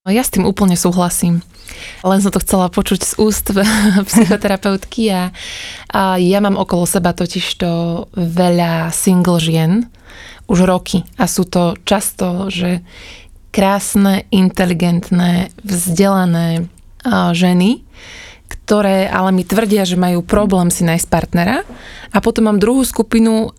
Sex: female